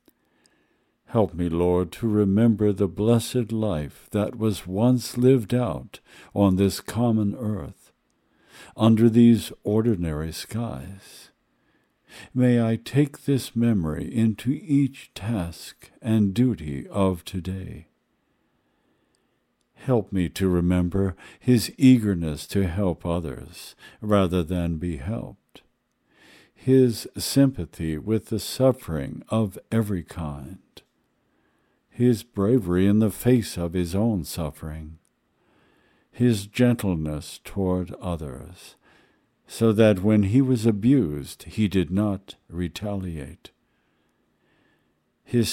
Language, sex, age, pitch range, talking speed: English, male, 60-79, 85-115 Hz, 105 wpm